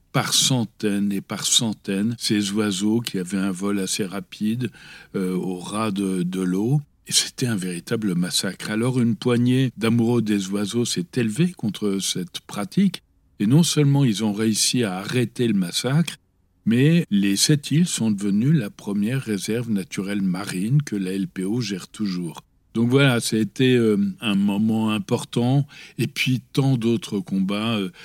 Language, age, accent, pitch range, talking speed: French, 60-79, French, 100-135 Hz, 155 wpm